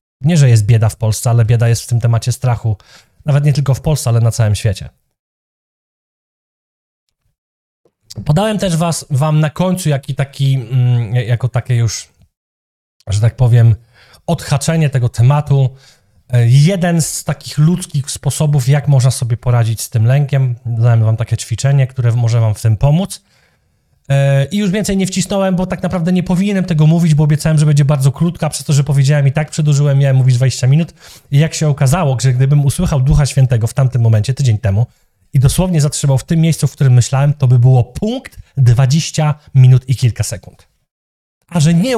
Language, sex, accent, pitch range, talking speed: Polish, male, native, 120-150 Hz, 180 wpm